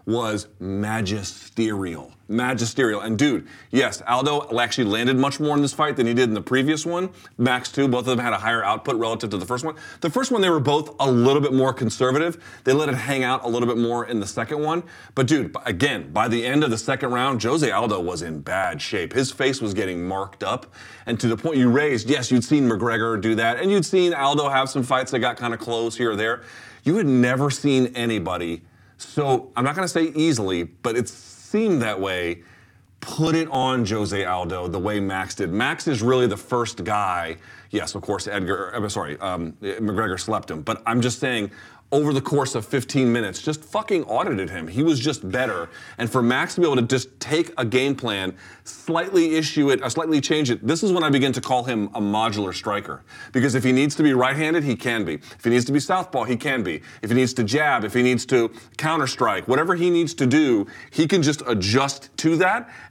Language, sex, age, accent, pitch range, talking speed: English, male, 30-49, American, 110-145 Hz, 225 wpm